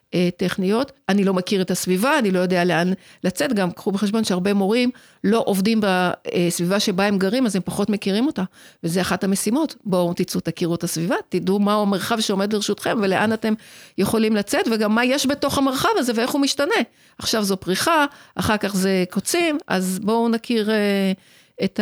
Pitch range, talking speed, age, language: 185-235 Hz, 175 wpm, 50-69, Hebrew